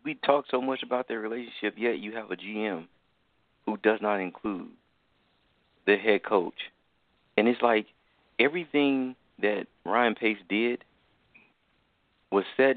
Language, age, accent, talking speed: English, 40-59, American, 135 wpm